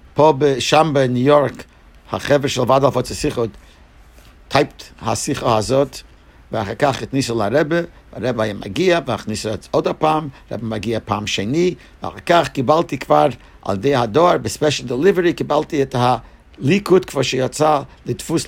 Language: English